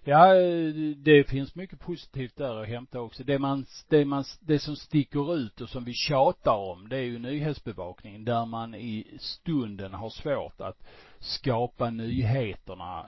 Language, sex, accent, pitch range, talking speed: Swedish, male, Norwegian, 105-130 Hz, 160 wpm